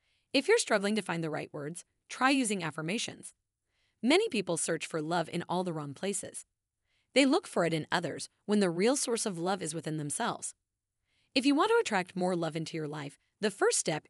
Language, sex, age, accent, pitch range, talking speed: English, female, 30-49, American, 160-235 Hz, 210 wpm